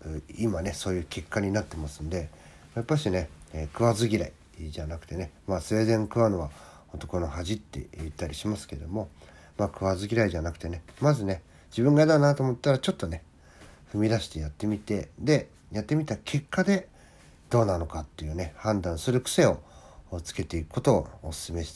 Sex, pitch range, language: male, 75-110 Hz, Japanese